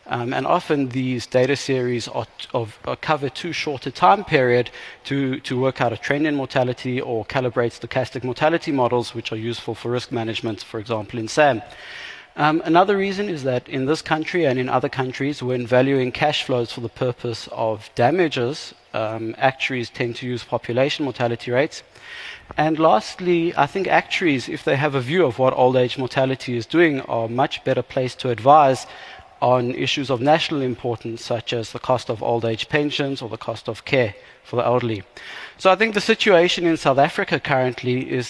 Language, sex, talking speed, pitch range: English, male, 185 wpm, 120-145 Hz